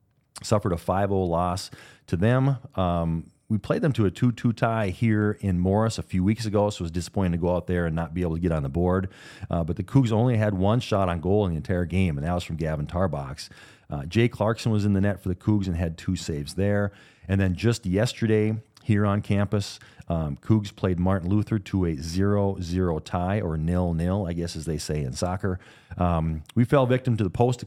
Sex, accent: male, American